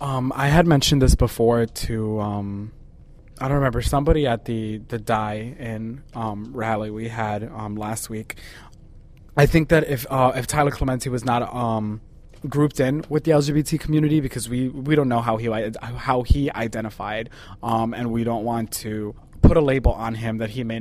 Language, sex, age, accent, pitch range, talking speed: English, male, 20-39, American, 110-130 Hz, 185 wpm